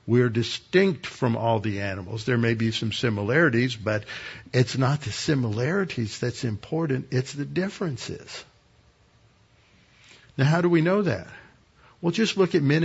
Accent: American